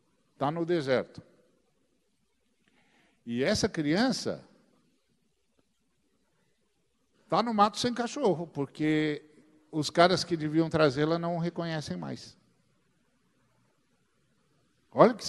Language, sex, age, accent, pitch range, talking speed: Portuguese, male, 50-69, Brazilian, 145-185 Hz, 90 wpm